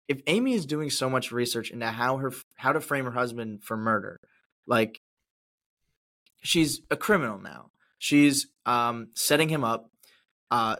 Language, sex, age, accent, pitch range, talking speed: English, male, 20-39, American, 125-155 Hz, 155 wpm